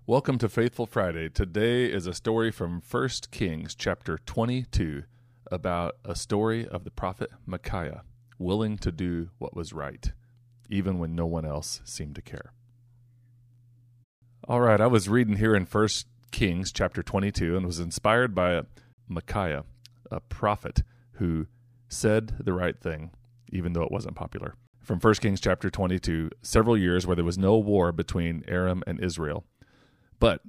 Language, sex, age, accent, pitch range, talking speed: English, male, 30-49, American, 85-115 Hz, 155 wpm